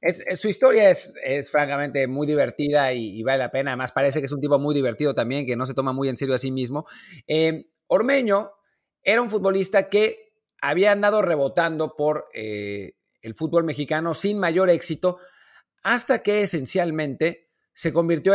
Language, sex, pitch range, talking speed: Spanish, male, 140-195 Hz, 175 wpm